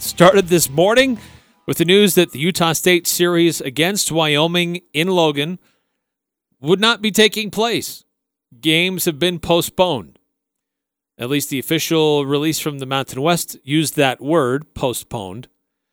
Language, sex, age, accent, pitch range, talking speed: English, male, 40-59, American, 130-175 Hz, 140 wpm